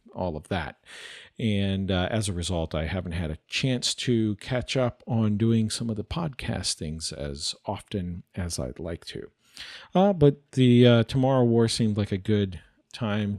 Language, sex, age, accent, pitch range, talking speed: English, male, 40-59, American, 95-120 Hz, 180 wpm